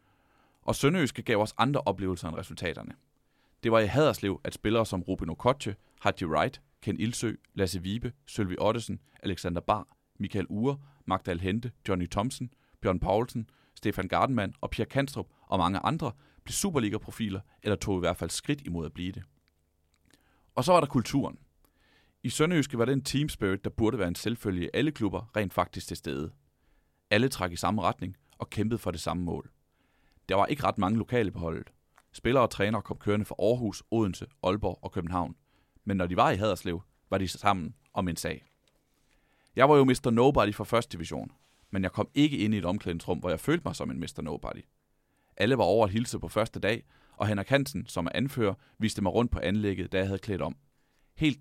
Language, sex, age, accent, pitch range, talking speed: Danish, male, 30-49, native, 90-115 Hz, 195 wpm